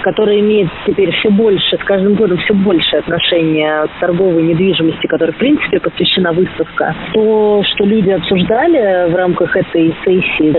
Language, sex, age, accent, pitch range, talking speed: Russian, female, 20-39, native, 160-190 Hz, 155 wpm